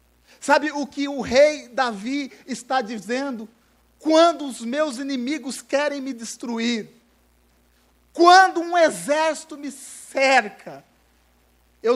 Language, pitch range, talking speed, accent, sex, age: Portuguese, 185-260 Hz, 105 wpm, Brazilian, male, 50-69